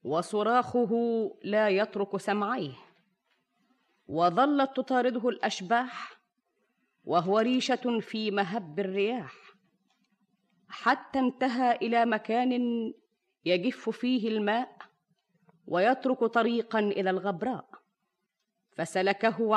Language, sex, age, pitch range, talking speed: Arabic, female, 30-49, 200-250 Hz, 75 wpm